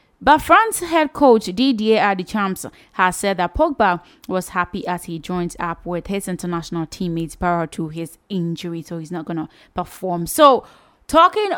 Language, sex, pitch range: English, female, 175-235 Hz